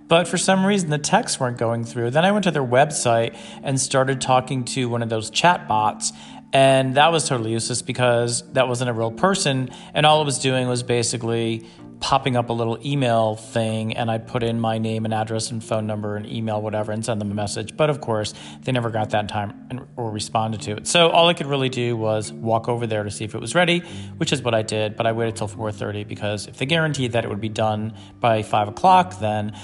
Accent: American